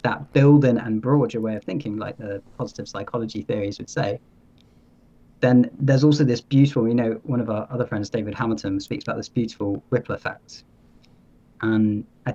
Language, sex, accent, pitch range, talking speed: English, male, British, 100-125 Hz, 180 wpm